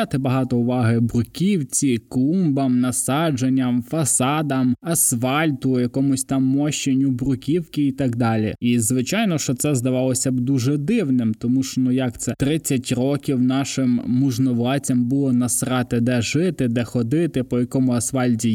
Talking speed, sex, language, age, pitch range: 130 wpm, male, Ukrainian, 20-39, 125-145 Hz